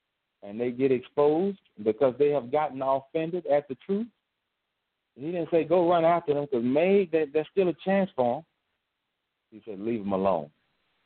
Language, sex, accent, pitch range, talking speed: English, male, American, 100-150 Hz, 170 wpm